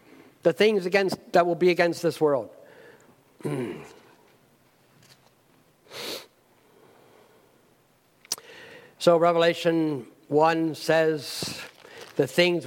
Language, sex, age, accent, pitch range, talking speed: English, male, 60-79, American, 155-185 Hz, 70 wpm